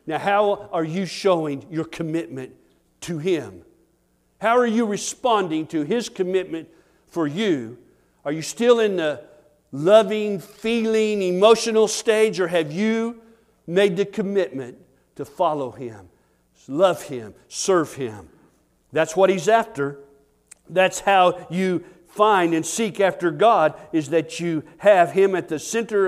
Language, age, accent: English, 50-69, American